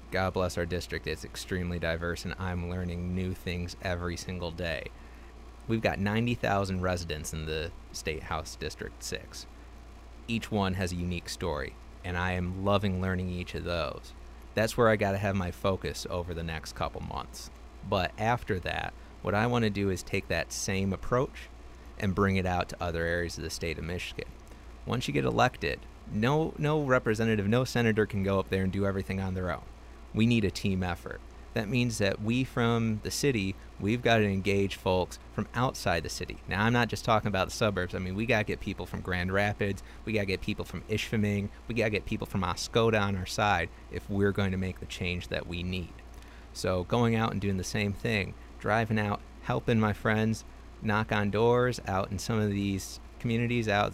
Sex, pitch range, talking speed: male, 85-105 Hz, 200 wpm